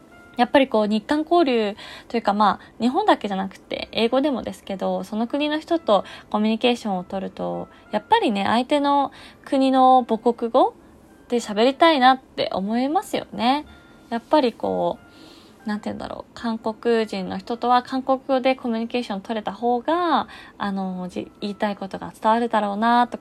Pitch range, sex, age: 195-260 Hz, female, 20-39